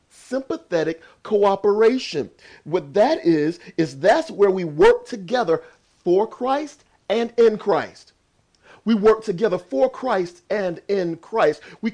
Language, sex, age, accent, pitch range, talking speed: English, male, 40-59, American, 170-220 Hz, 125 wpm